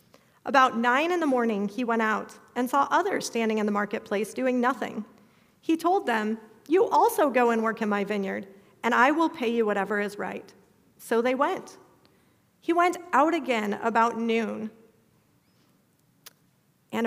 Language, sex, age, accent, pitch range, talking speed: English, female, 40-59, American, 215-275 Hz, 160 wpm